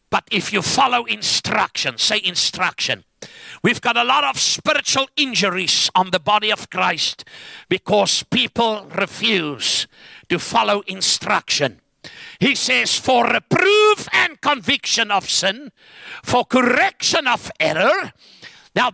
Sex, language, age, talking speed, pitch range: male, English, 60-79, 120 wpm, 195-275 Hz